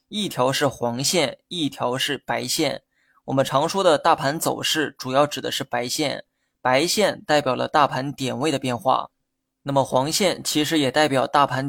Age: 20-39